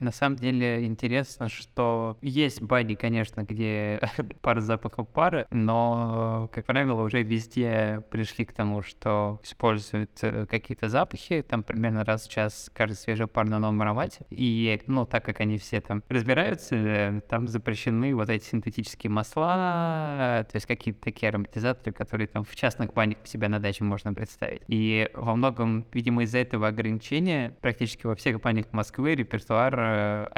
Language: Russian